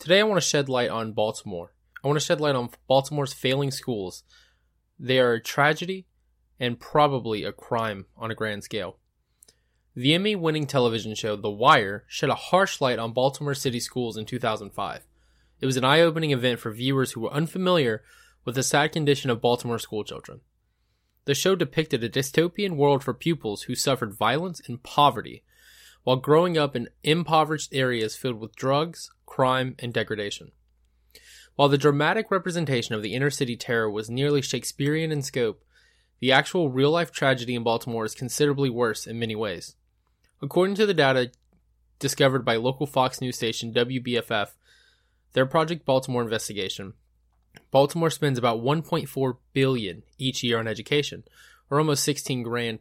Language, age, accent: English, 20-39, American